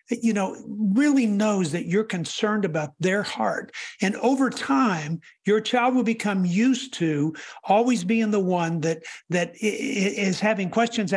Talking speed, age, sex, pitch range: 150 wpm, 60-79, male, 185-245 Hz